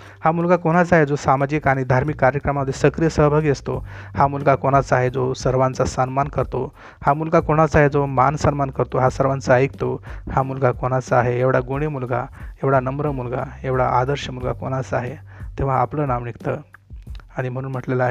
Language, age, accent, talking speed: Hindi, 30-49, native, 125 wpm